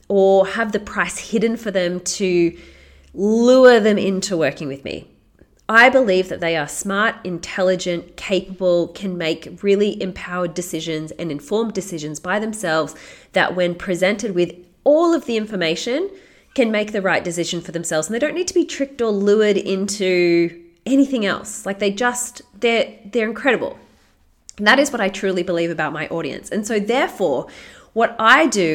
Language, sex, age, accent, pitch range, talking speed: English, female, 30-49, Australian, 170-220 Hz, 165 wpm